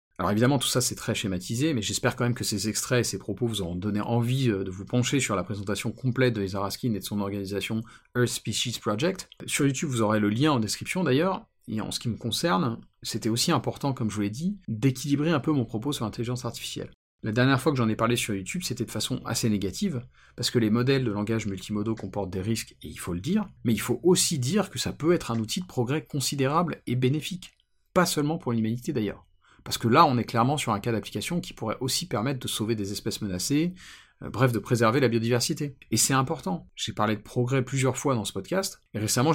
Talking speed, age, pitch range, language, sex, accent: 240 wpm, 40-59, 110-140 Hz, French, male, French